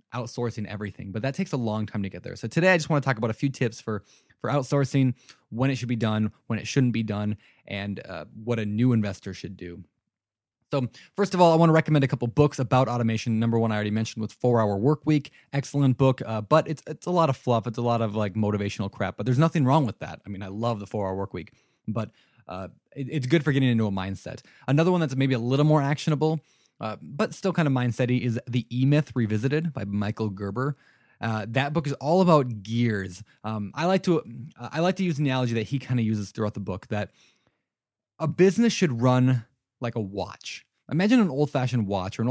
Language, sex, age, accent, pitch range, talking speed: English, male, 20-39, American, 110-145 Hz, 240 wpm